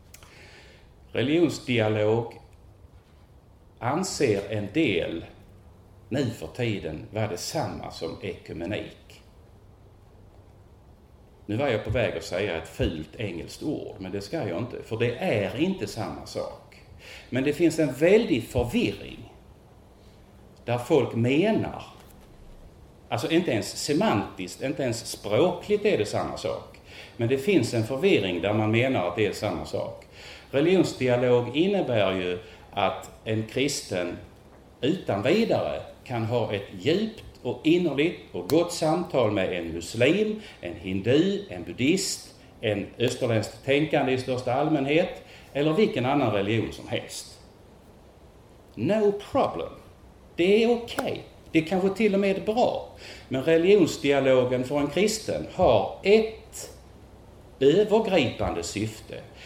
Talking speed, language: 125 wpm, Swedish